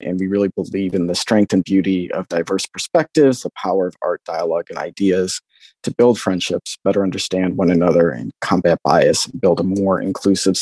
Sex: male